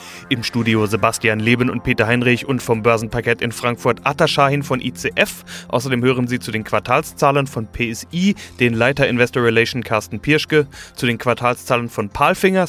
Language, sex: German, male